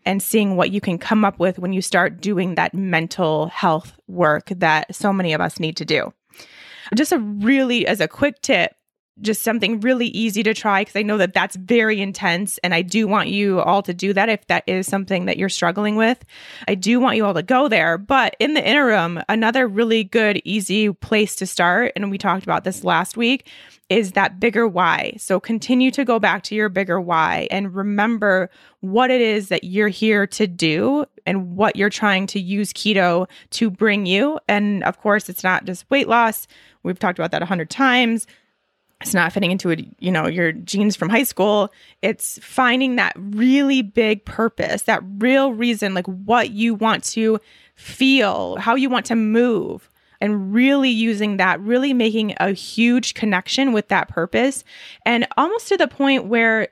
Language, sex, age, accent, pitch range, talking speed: English, female, 20-39, American, 190-235 Hz, 195 wpm